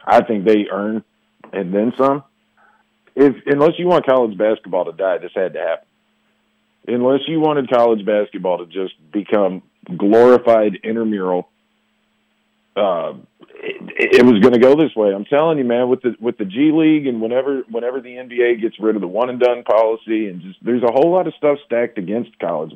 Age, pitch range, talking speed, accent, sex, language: 40-59, 105-130 Hz, 190 wpm, American, male, English